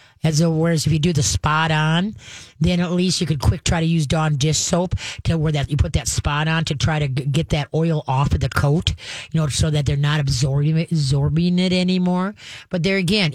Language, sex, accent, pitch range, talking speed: English, female, American, 145-175 Hz, 245 wpm